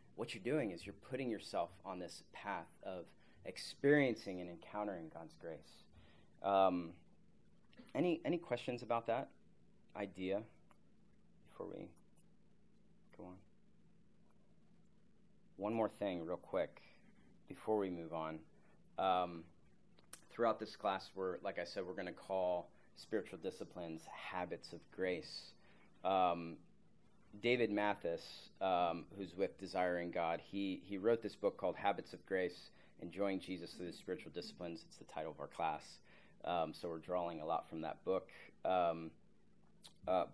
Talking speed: 140 wpm